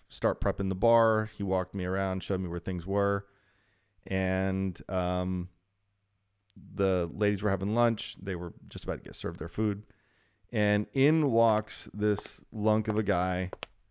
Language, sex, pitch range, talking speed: English, male, 95-105 Hz, 160 wpm